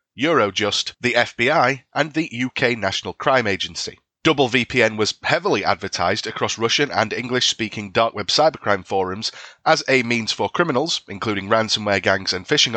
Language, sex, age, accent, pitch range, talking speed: English, male, 30-49, British, 100-125 Hz, 150 wpm